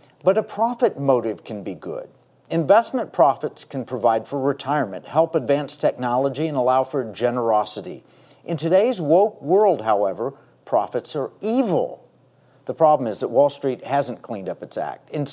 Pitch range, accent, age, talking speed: 135-195 Hz, American, 50-69, 155 wpm